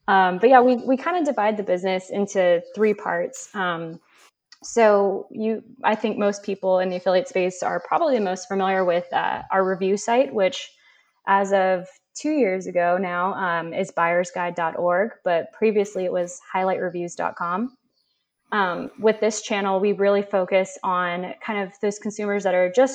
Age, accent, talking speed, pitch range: 20-39, American, 165 wpm, 185-220 Hz